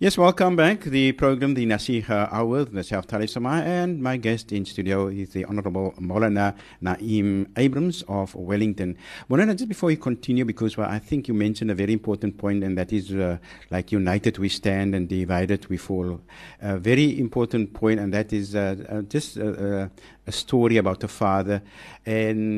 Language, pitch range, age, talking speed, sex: English, 100-120 Hz, 60-79, 185 wpm, male